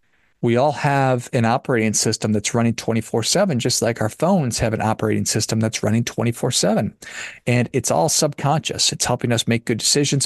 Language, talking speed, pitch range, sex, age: English, 175 wpm, 110-135 Hz, male, 40-59